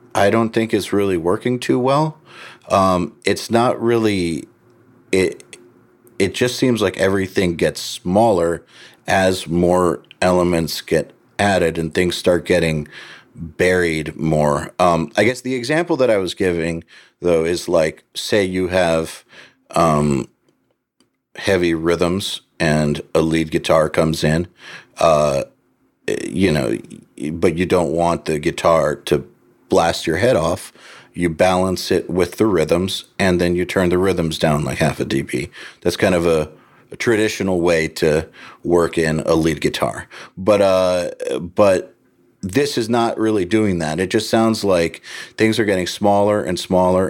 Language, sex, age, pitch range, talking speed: English, male, 40-59, 85-105 Hz, 150 wpm